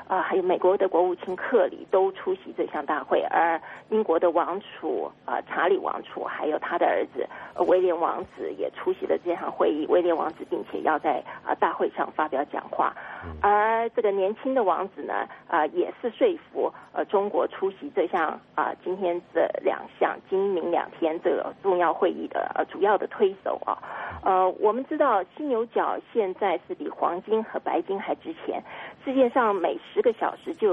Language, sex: English, female